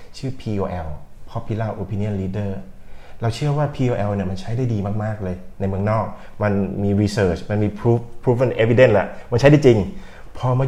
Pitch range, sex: 95-120 Hz, male